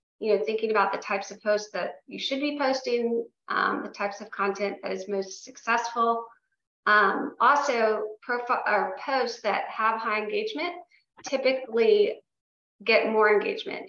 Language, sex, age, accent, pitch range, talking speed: English, female, 40-59, American, 200-235 Hz, 145 wpm